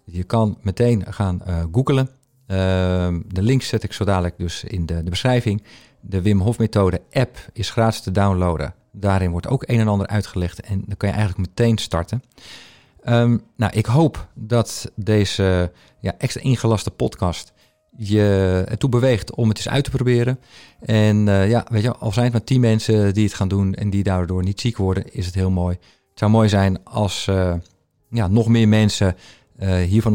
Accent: Dutch